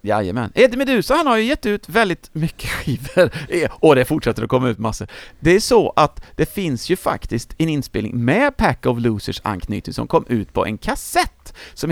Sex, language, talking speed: male, English, 200 wpm